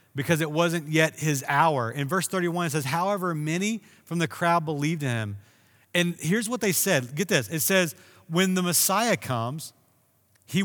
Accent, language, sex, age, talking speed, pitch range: American, English, male, 30-49, 185 wpm, 150-185 Hz